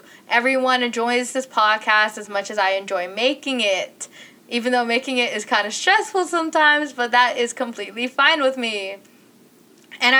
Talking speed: 165 wpm